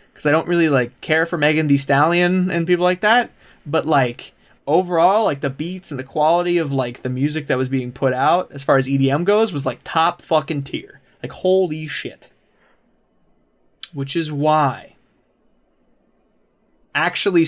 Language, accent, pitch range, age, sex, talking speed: English, American, 130-165 Hz, 20-39, male, 170 wpm